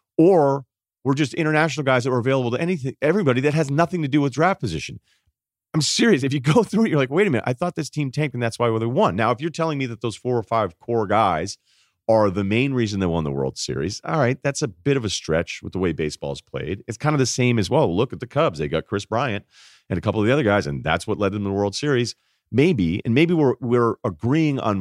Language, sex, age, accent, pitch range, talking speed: English, male, 40-59, American, 105-145 Hz, 275 wpm